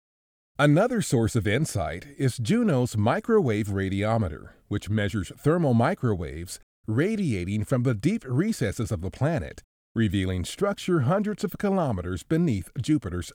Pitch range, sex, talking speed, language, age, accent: 90-145 Hz, male, 120 wpm, English, 40-59, American